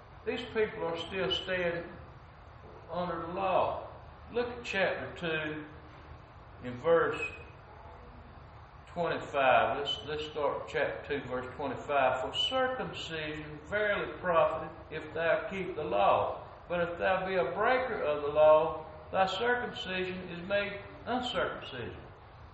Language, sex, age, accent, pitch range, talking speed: English, male, 60-79, American, 145-220 Hz, 120 wpm